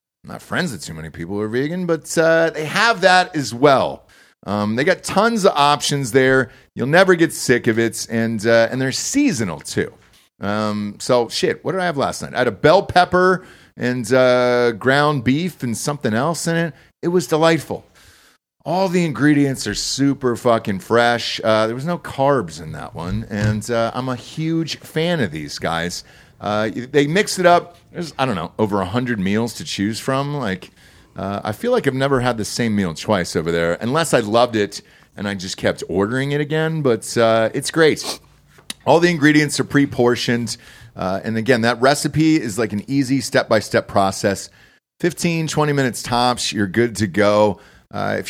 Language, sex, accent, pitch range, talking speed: English, male, American, 110-160 Hz, 200 wpm